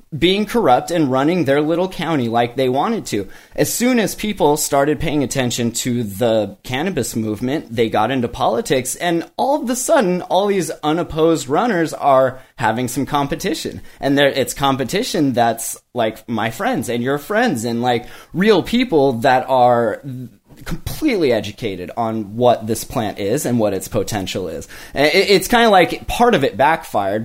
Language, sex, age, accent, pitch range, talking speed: English, male, 20-39, American, 120-165 Hz, 165 wpm